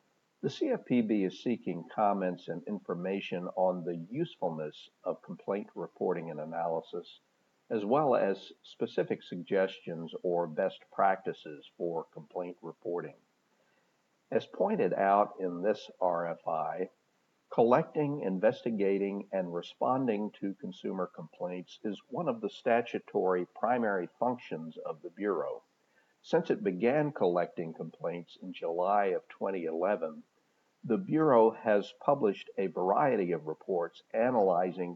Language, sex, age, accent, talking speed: English, male, 50-69, American, 115 wpm